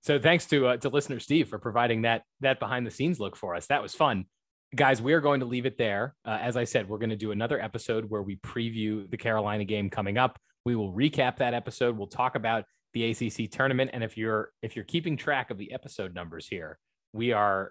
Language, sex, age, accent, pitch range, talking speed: English, male, 20-39, American, 100-120 Hz, 240 wpm